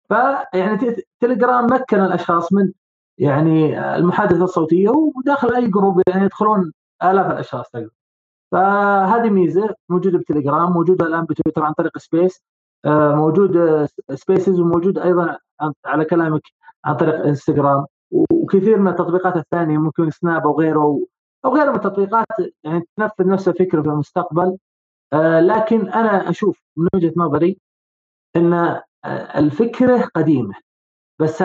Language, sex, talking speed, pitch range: Arabic, male, 120 wpm, 155-200 Hz